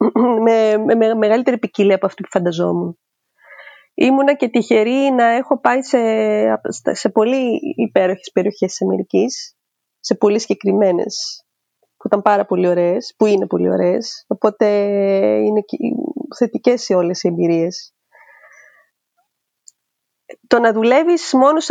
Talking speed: 120 wpm